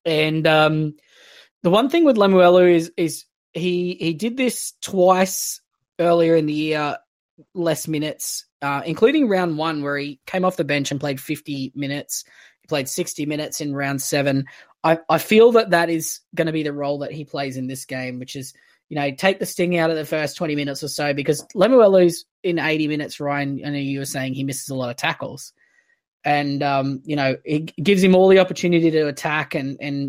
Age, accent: 20-39, Australian